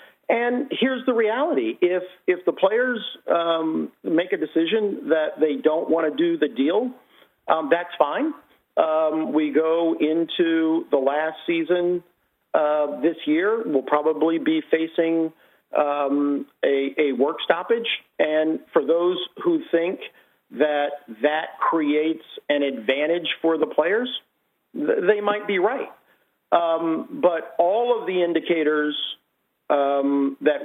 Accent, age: American, 50-69